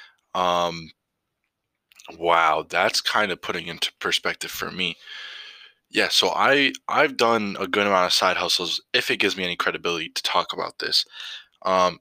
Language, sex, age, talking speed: English, male, 20-39, 160 wpm